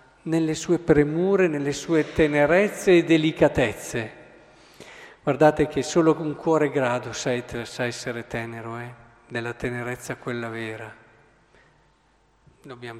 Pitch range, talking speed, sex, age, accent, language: 140-185 Hz, 105 wpm, male, 50-69, native, Italian